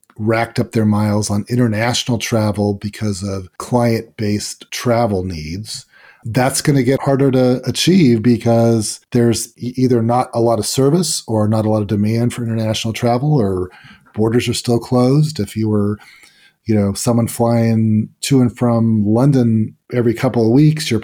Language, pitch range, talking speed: English, 105-120 Hz, 165 wpm